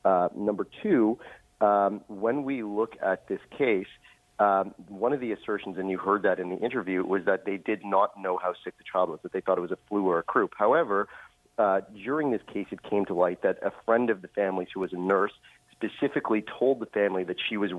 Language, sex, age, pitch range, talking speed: English, male, 40-59, 95-110 Hz, 235 wpm